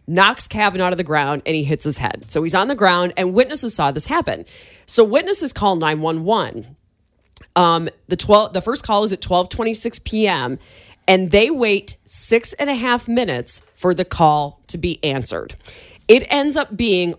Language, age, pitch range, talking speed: English, 30-49, 155-220 Hz, 185 wpm